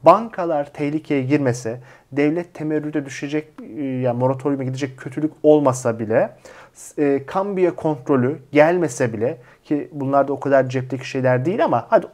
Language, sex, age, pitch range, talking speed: Turkish, male, 40-59, 130-155 Hz, 140 wpm